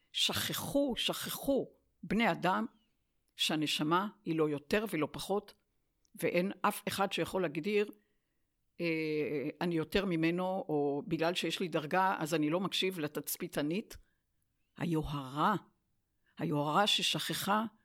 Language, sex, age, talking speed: Hebrew, female, 60-79, 110 wpm